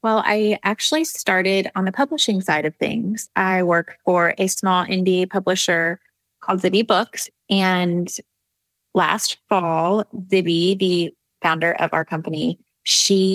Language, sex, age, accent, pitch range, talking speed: English, female, 20-39, American, 170-210 Hz, 135 wpm